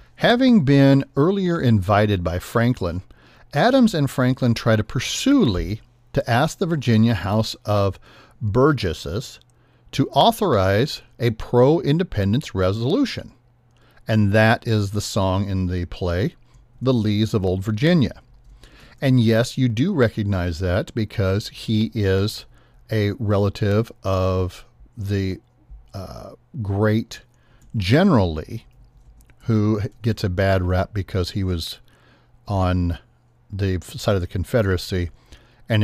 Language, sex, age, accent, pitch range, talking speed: English, male, 50-69, American, 95-120 Hz, 115 wpm